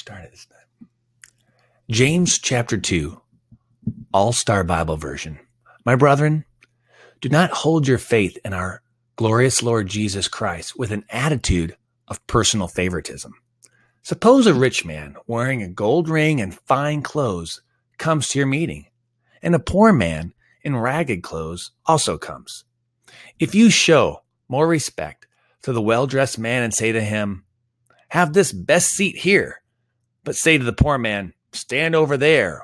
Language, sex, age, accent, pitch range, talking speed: English, male, 30-49, American, 100-140 Hz, 140 wpm